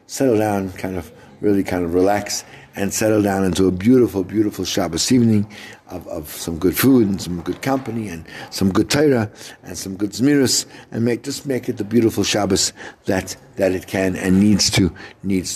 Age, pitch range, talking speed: 60-79, 95-125 Hz, 195 wpm